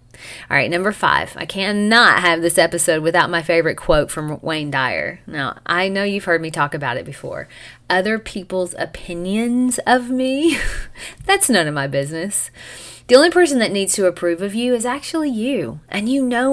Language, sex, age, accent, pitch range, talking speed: English, female, 30-49, American, 165-215 Hz, 185 wpm